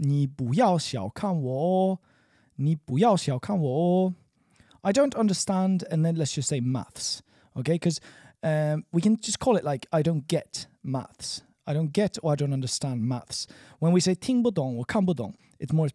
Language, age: English, 30-49